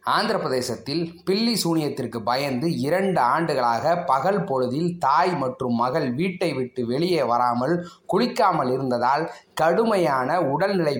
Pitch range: 140-185 Hz